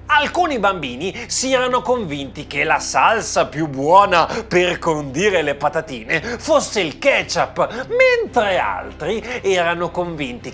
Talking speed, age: 120 wpm, 30-49